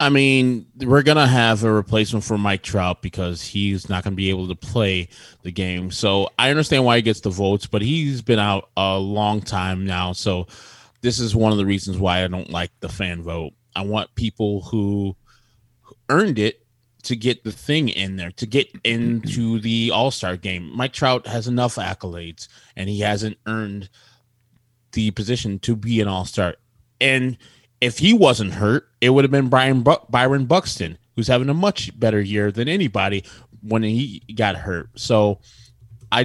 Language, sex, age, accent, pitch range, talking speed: English, male, 20-39, American, 95-120 Hz, 185 wpm